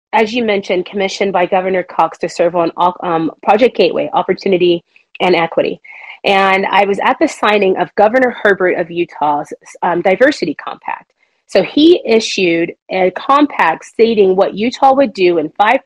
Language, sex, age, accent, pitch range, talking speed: English, female, 30-49, American, 185-245 Hz, 160 wpm